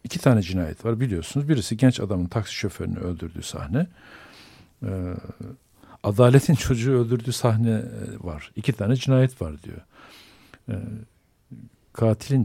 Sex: male